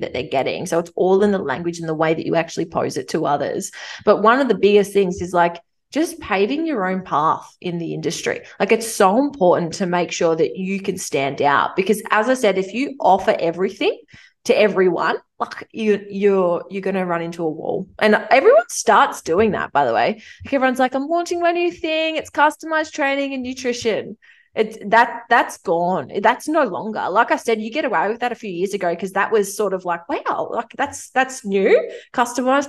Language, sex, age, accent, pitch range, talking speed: English, female, 20-39, Australian, 180-240 Hz, 220 wpm